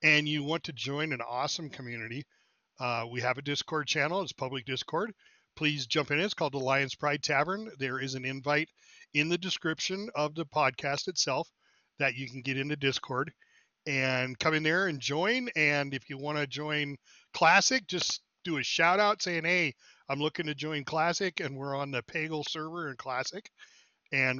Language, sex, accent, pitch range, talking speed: English, male, American, 130-155 Hz, 190 wpm